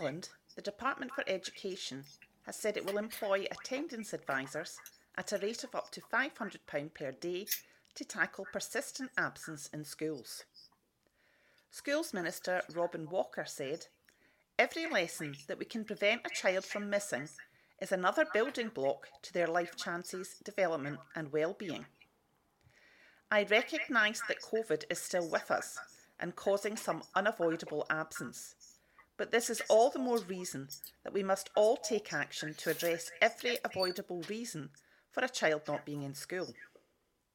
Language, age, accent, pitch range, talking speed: English, 40-59, British, 165-225 Hz, 145 wpm